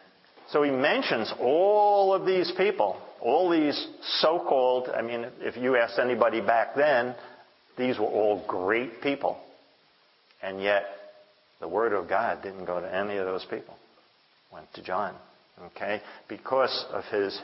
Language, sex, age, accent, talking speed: English, male, 50-69, American, 150 wpm